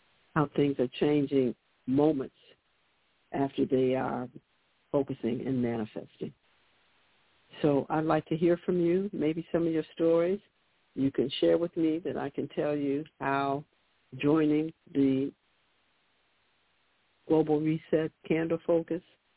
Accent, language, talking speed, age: American, English, 125 wpm, 60-79